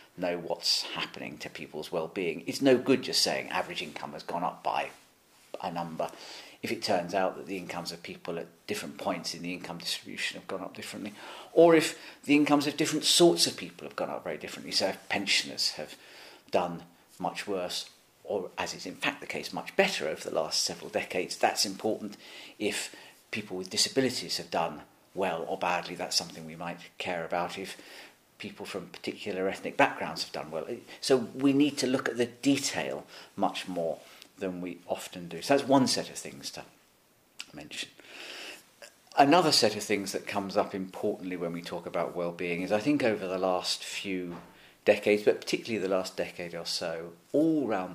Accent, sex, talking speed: British, male, 200 wpm